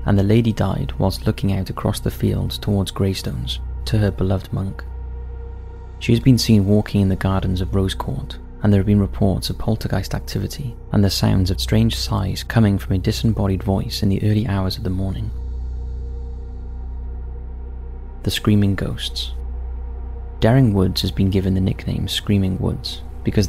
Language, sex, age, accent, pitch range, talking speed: English, male, 30-49, British, 70-105 Hz, 165 wpm